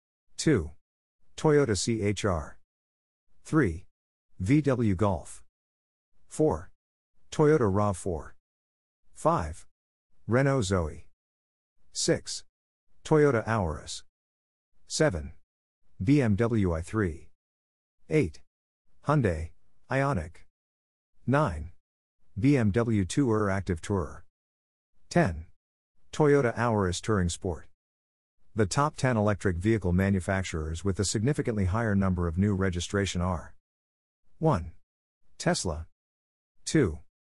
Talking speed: 80 wpm